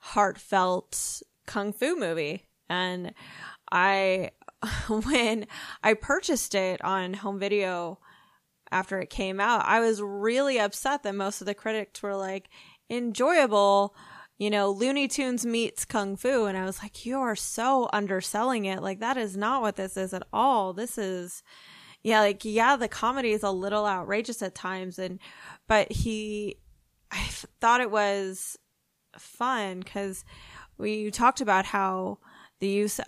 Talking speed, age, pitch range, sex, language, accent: 150 wpm, 20-39, 185-220 Hz, female, English, American